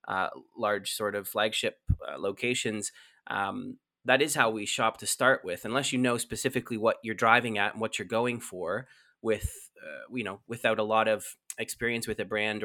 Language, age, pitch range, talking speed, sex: English, 20-39, 110-130 Hz, 195 wpm, male